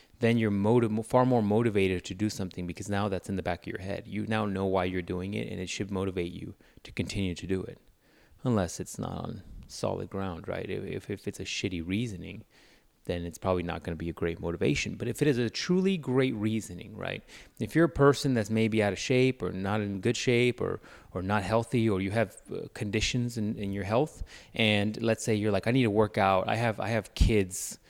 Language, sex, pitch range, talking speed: English, male, 95-115 Hz, 230 wpm